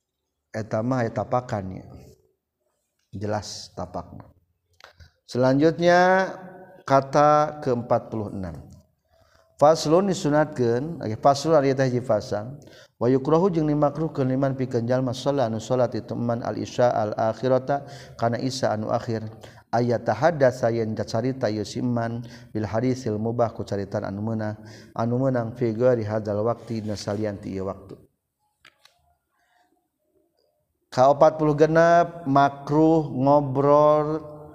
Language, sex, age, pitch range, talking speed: Indonesian, male, 50-69, 110-150 Hz, 105 wpm